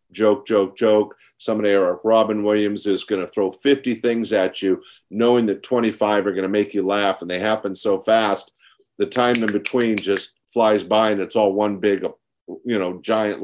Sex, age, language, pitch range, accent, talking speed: male, 50-69, English, 105-150 Hz, American, 195 wpm